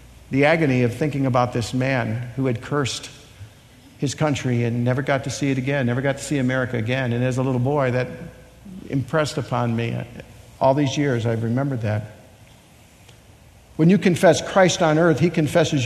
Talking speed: 180 wpm